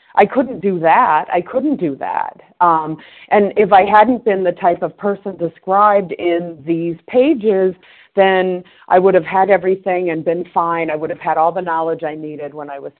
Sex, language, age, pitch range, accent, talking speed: female, English, 40-59, 160-205 Hz, American, 200 wpm